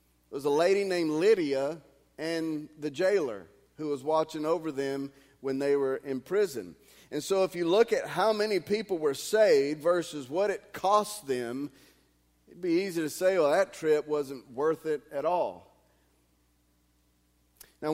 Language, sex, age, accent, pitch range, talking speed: English, male, 40-59, American, 125-165 Hz, 165 wpm